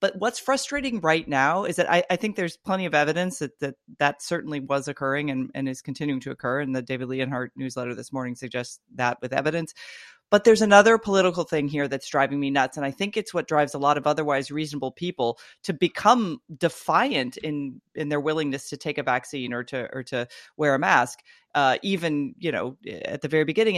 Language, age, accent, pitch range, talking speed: English, 30-49, American, 140-185 Hz, 215 wpm